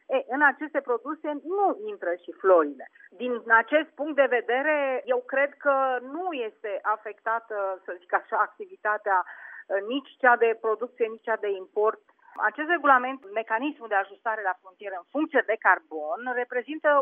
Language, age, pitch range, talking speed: Romanian, 30-49, 220-285 Hz, 150 wpm